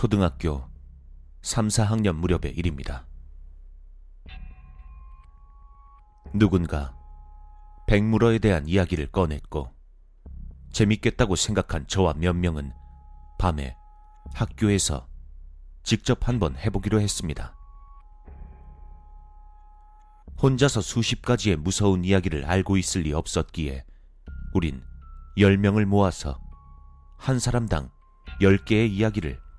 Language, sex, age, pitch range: Korean, male, 30-49, 65-95 Hz